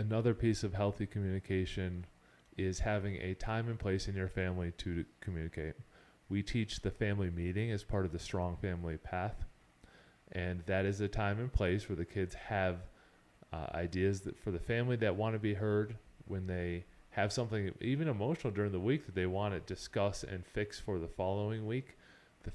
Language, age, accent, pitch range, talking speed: English, 30-49, American, 90-105 Hz, 190 wpm